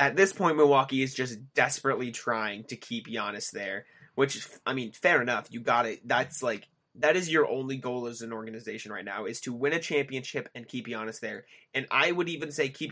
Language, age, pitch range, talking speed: English, 20-39, 115-145 Hz, 220 wpm